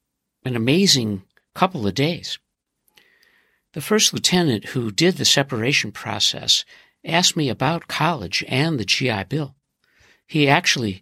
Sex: male